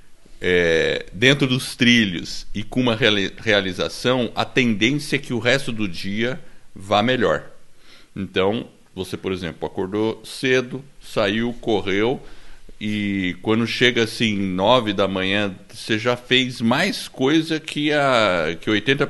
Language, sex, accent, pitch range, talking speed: Portuguese, male, Brazilian, 100-130 Hz, 125 wpm